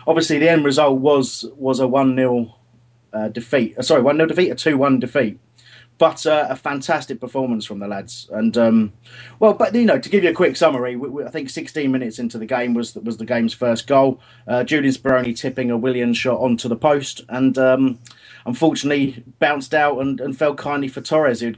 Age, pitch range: 30-49, 120-140 Hz